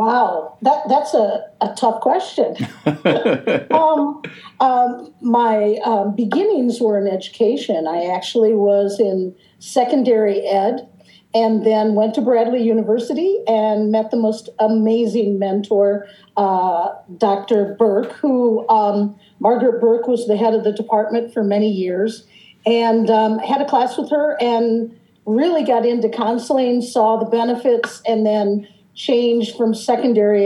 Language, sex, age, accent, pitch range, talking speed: English, female, 50-69, American, 200-235 Hz, 135 wpm